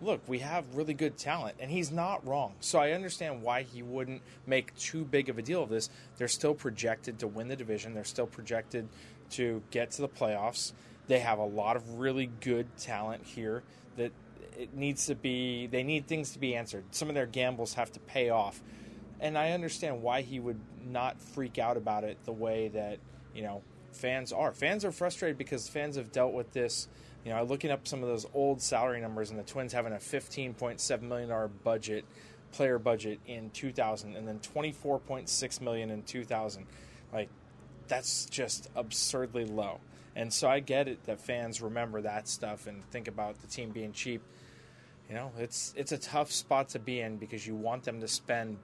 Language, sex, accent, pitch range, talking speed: English, male, American, 110-135 Hz, 200 wpm